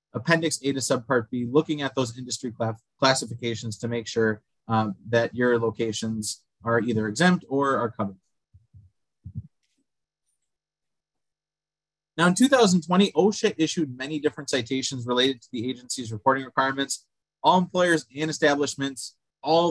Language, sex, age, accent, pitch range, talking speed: English, male, 20-39, American, 120-155 Hz, 130 wpm